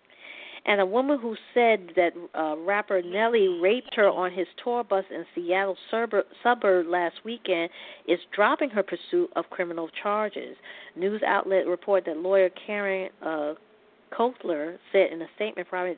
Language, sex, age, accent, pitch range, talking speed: English, female, 40-59, American, 170-210 Hz, 150 wpm